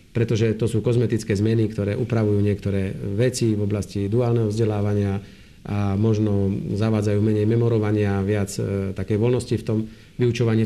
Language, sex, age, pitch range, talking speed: Slovak, male, 50-69, 105-125 Hz, 140 wpm